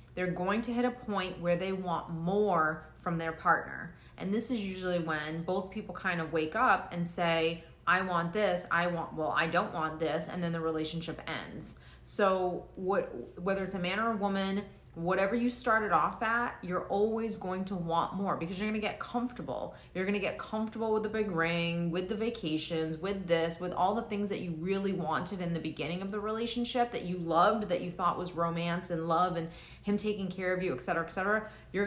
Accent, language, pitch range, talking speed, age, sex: American, English, 170-205 Hz, 215 wpm, 30-49, female